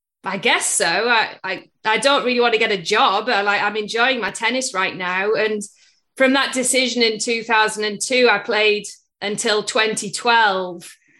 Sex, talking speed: female, 165 wpm